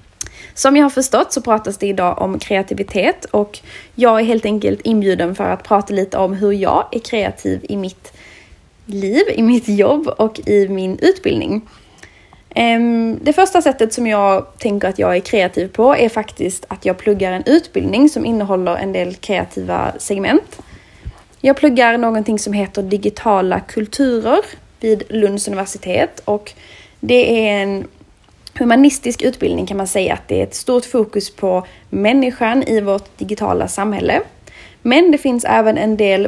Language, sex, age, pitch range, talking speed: Swedish, female, 20-39, 195-245 Hz, 160 wpm